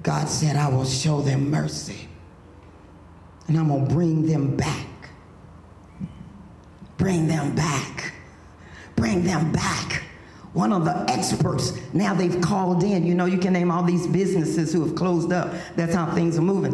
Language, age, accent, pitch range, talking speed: English, 50-69, American, 145-195 Hz, 160 wpm